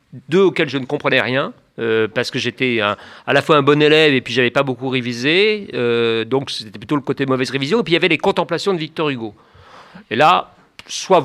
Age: 40-59